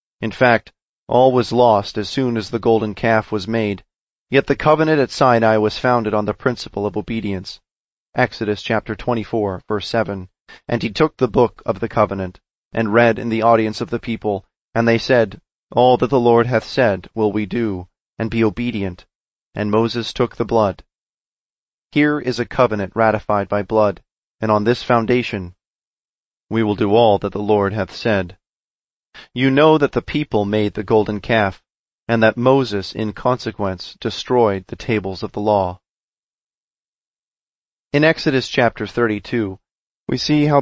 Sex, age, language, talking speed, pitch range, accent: male, 30-49, English, 165 wpm, 105-120 Hz, American